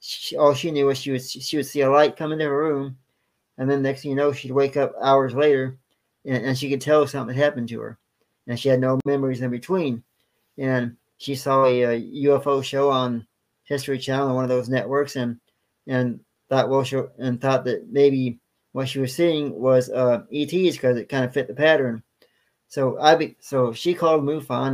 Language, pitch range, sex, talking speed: English, 125-140 Hz, male, 215 wpm